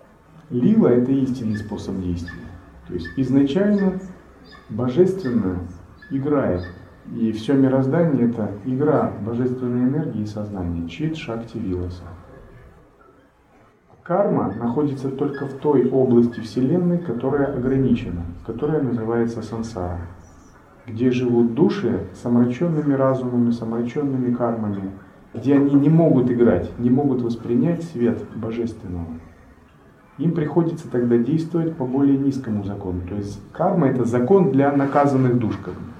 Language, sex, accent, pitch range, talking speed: Russian, male, native, 105-140 Hz, 120 wpm